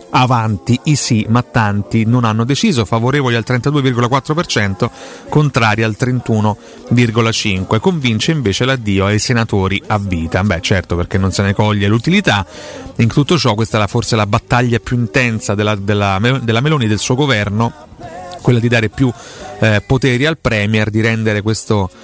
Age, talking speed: 30-49, 150 wpm